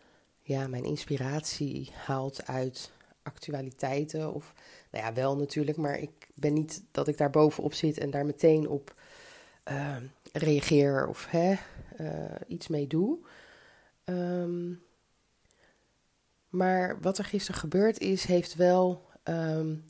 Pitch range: 150-185 Hz